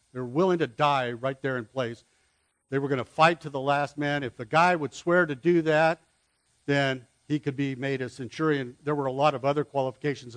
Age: 60-79